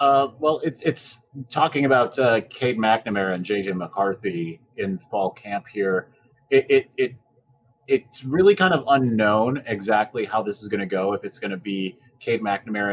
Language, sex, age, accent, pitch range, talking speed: English, male, 30-49, American, 100-135 Hz, 175 wpm